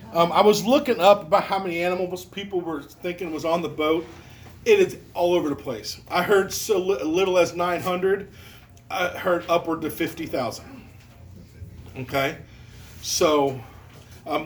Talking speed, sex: 155 wpm, male